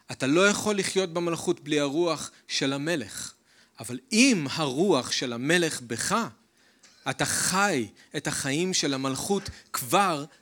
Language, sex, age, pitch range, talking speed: Hebrew, male, 40-59, 145-210 Hz, 125 wpm